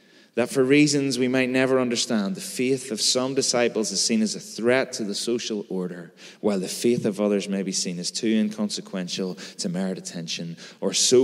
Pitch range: 105-145 Hz